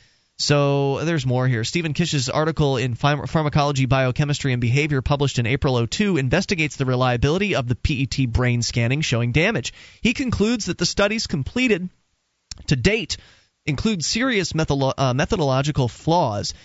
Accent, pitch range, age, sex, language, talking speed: American, 130-180 Hz, 30-49, male, English, 150 wpm